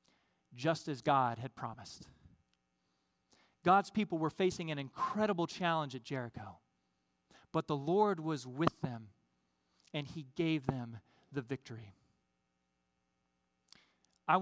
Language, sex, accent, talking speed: English, male, American, 110 wpm